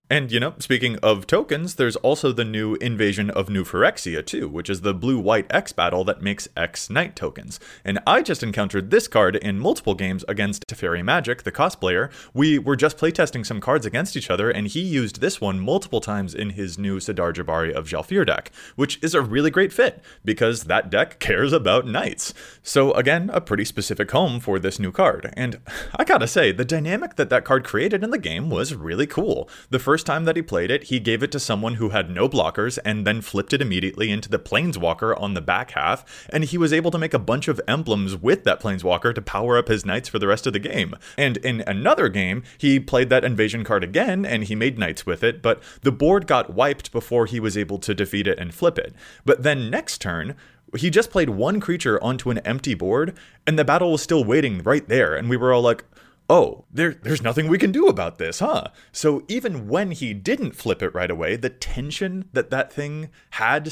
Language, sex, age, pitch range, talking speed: English, male, 30-49, 105-150 Hz, 220 wpm